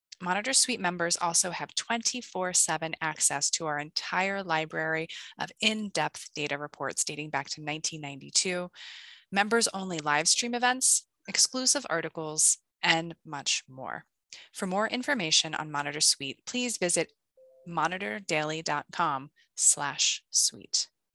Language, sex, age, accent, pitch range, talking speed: English, female, 20-39, American, 155-200 Hz, 105 wpm